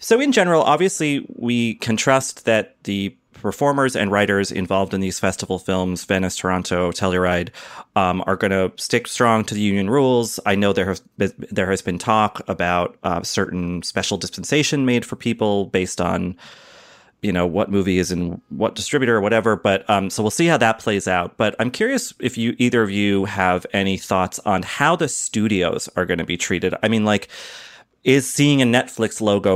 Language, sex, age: English, male, 30-49